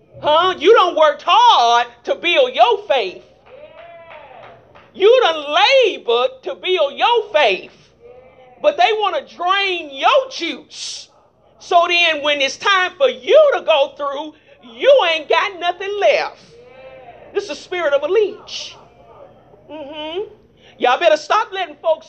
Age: 40-59